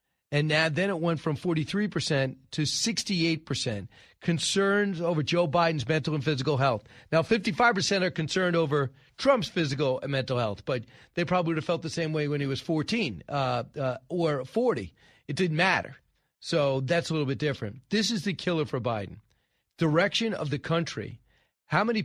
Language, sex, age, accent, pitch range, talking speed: English, male, 40-59, American, 140-185 Hz, 175 wpm